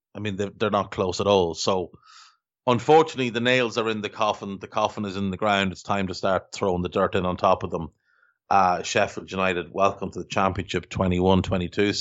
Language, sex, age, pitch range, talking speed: English, male, 30-49, 100-115 Hz, 210 wpm